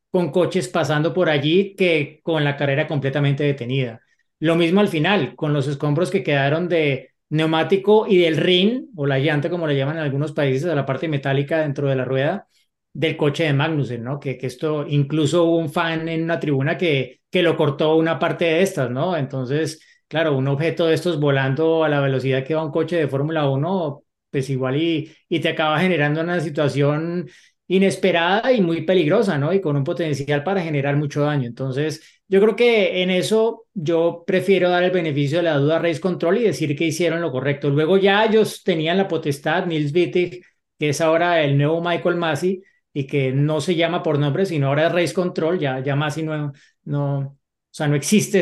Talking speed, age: 200 wpm, 30-49